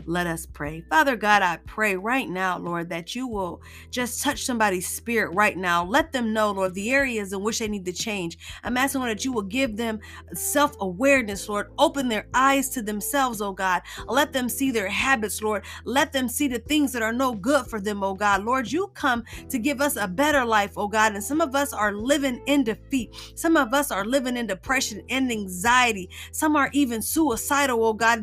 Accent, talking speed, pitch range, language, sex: American, 215 wpm, 215-290 Hz, English, female